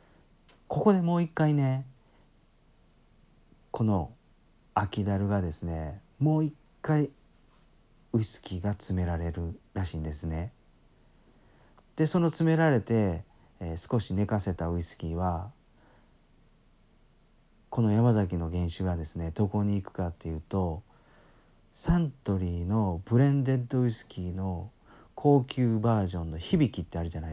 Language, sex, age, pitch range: Japanese, male, 40-59, 85-125 Hz